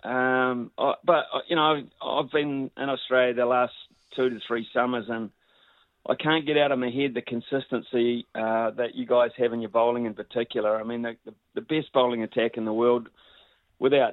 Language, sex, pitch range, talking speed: English, male, 120-140 Hz, 190 wpm